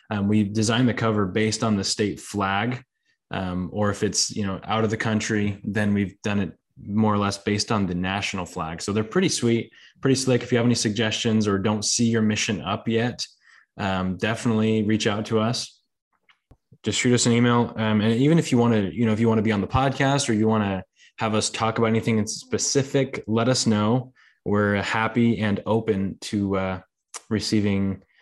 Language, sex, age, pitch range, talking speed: English, male, 20-39, 105-120 Hz, 210 wpm